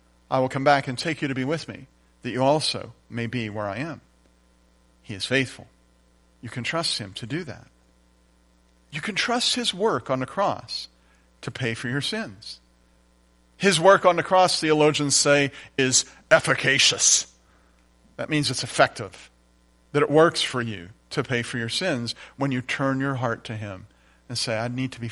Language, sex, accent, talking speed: English, male, American, 185 wpm